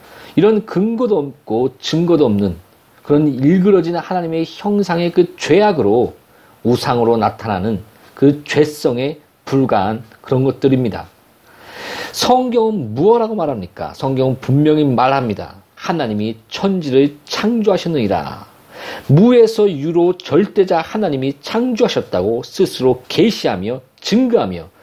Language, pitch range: Korean, 130-205 Hz